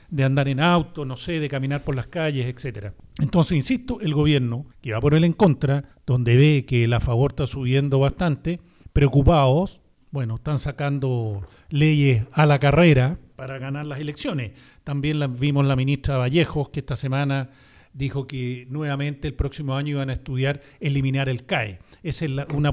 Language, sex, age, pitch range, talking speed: Spanish, male, 40-59, 130-155 Hz, 175 wpm